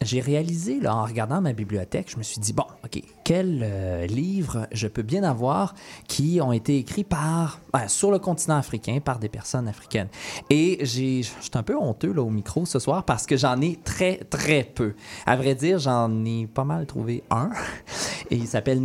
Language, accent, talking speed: French, Canadian, 205 wpm